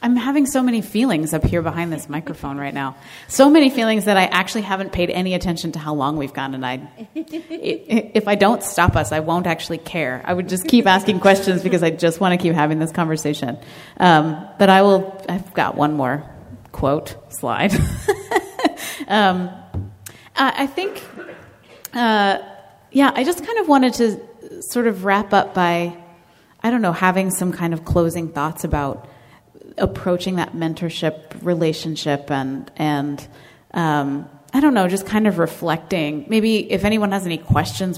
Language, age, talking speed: English, 30-49, 175 wpm